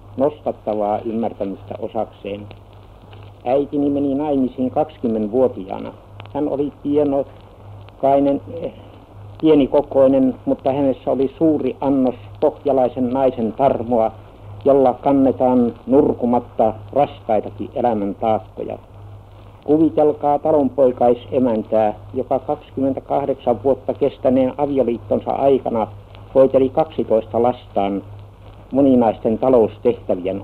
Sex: male